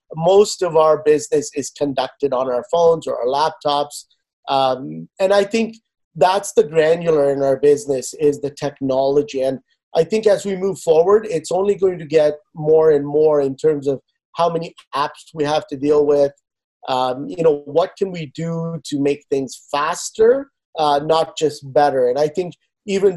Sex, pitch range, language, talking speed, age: male, 140-175 Hz, English, 180 wpm, 30-49